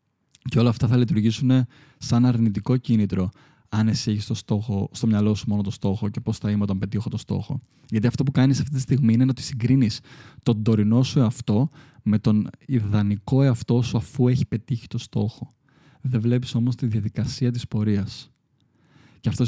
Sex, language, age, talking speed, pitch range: male, Greek, 20-39, 180 wpm, 110-130 Hz